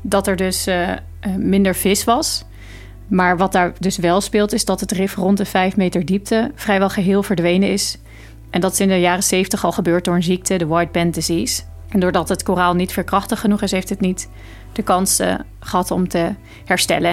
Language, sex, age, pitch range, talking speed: Dutch, female, 40-59, 170-195 Hz, 210 wpm